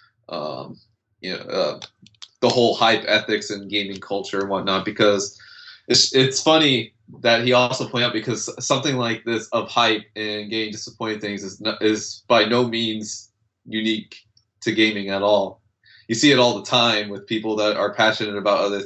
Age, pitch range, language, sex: 20-39, 100-120 Hz, English, male